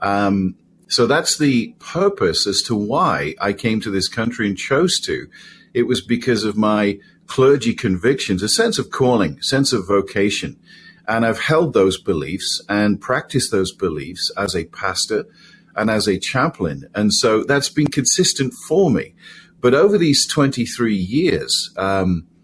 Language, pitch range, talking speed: English, 105-130 Hz, 160 wpm